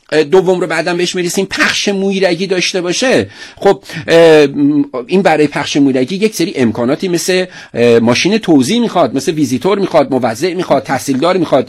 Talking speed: 145 wpm